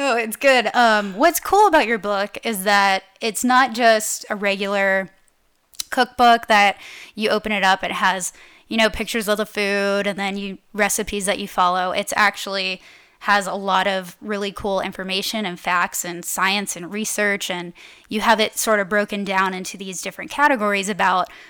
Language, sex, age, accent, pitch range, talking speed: English, female, 10-29, American, 185-215 Hz, 185 wpm